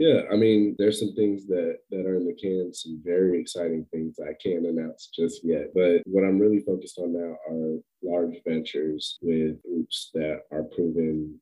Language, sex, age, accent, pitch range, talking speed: English, male, 30-49, American, 75-90 Hz, 190 wpm